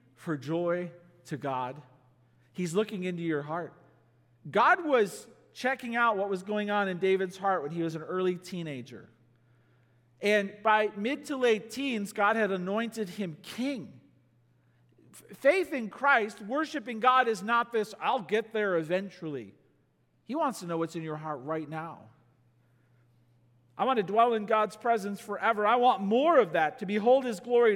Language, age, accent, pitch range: English, 40-59, American, 155-235 Hz